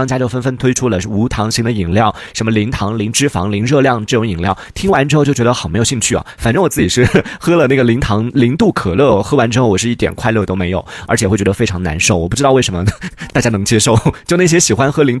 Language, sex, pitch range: Chinese, male, 100-130 Hz